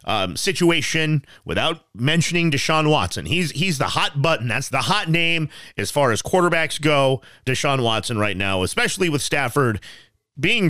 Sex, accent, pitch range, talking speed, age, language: male, American, 115-185 Hz, 155 wpm, 30-49, English